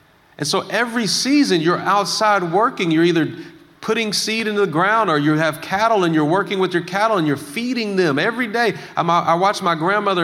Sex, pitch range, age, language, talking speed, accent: male, 135-190 Hz, 40-59, English, 200 wpm, American